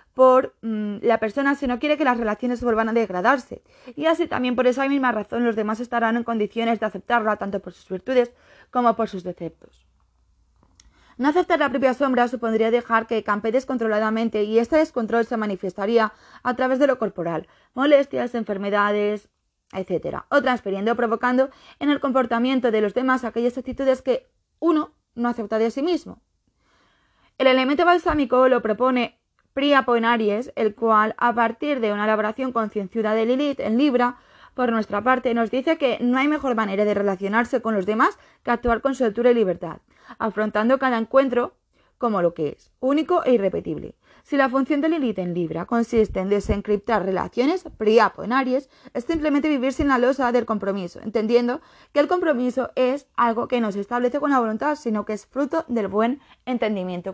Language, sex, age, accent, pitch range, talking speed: Spanish, female, 20-39, Spanish, 215-265 Hz, 180 wpm